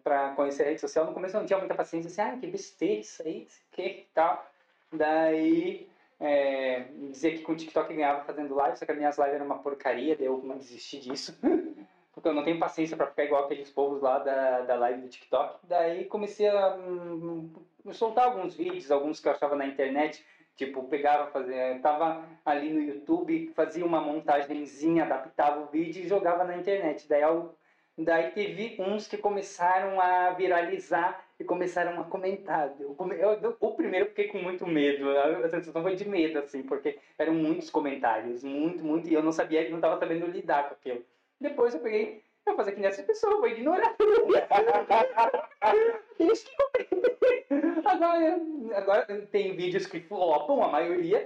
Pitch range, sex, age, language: 145-215 Hz, male, 20-39, Portuguese